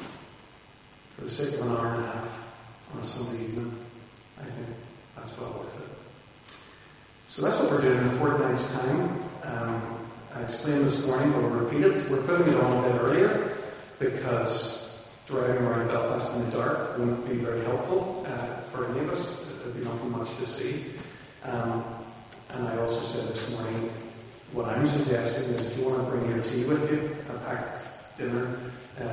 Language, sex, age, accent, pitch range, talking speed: English, male, 40-59, American, 115-130 Hz, 180 wpm